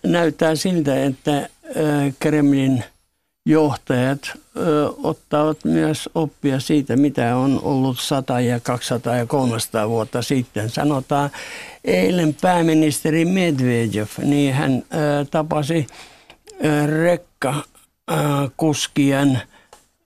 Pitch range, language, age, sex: 135-155 Hz, Finnish, 60-79, male